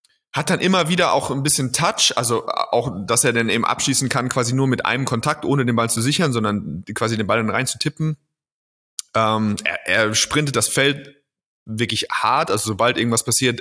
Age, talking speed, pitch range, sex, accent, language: 30-49, 205 wpm, 110-135 Hz, male, German, German